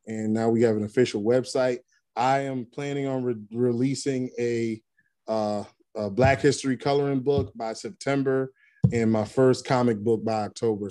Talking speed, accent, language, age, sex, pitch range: 160 wpm, American, English, 20-39, male, 105-130 Hz